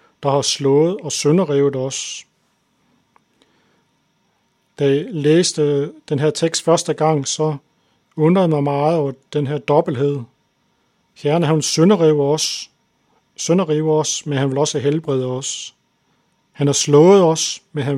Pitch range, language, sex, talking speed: 140-165 Hz, Danish, male, 140 wpm